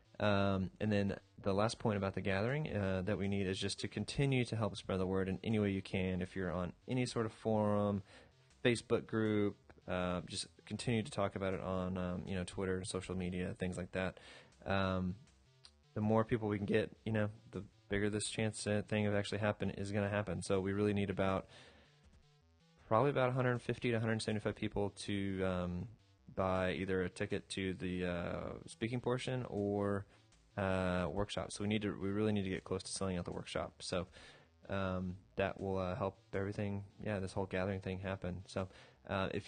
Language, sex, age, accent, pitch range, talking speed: English, male, 20-39, American, 95-105 Hz, 200 wpm